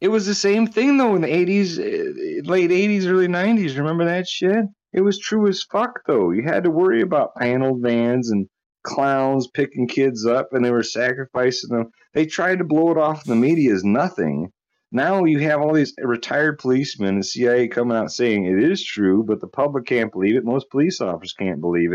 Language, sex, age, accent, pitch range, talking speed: English, male, 30-49, American, 110-175 Hz, 210 wpm